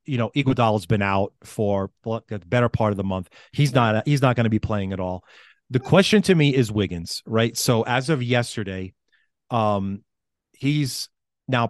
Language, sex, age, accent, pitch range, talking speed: English, male, 30-49, American, 100-120 Hz, 185 wpm